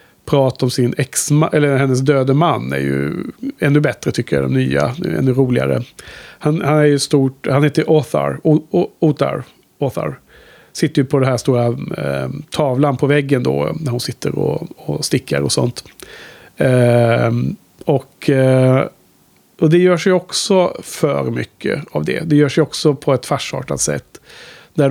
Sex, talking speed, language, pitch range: male, 160 wpm, Swedish, 130-155 Hz